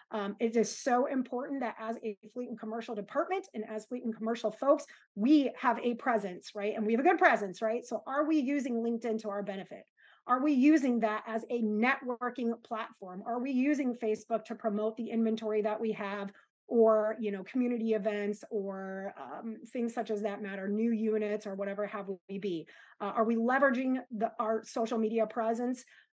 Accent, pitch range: American, 215-265 Hz